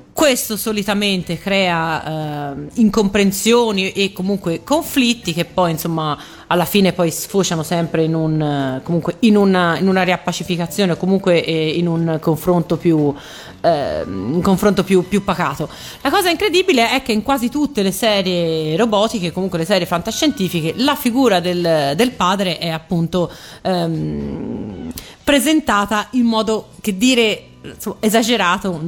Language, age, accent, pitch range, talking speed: Italian, 30-49, native, 165-210 Hz, 135 wpm